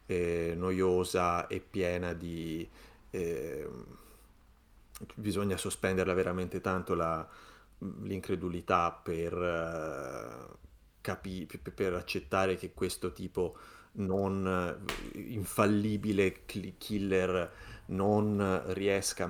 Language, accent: Italian, native